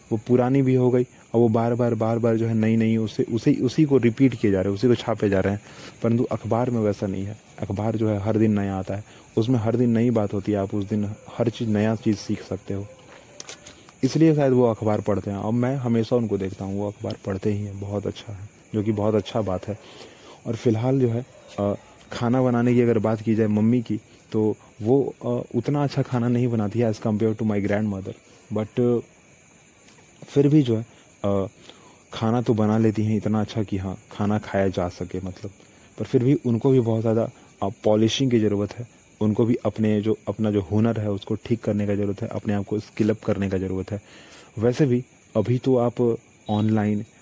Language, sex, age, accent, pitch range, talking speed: Hindi, male, 30-49, native, 105-120 Hz, 220 wpm